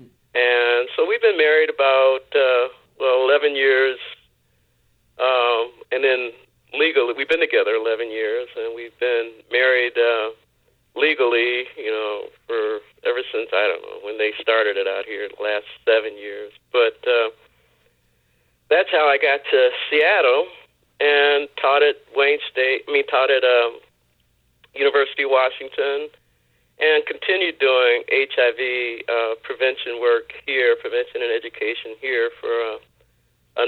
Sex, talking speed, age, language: male, 140 wpm, 50-69, English